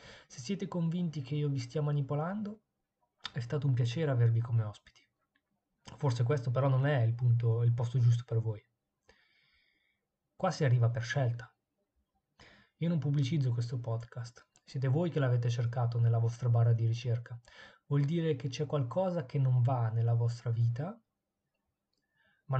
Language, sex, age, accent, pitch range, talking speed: Italian, male, 20-39, native, 120-145 Hz, 155 wpm